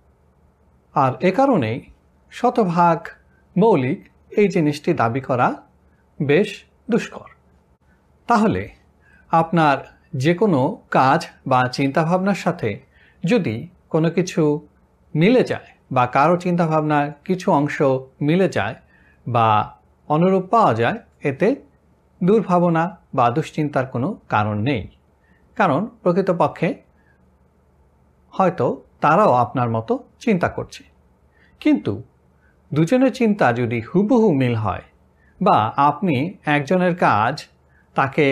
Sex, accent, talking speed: male, native, 100 wpm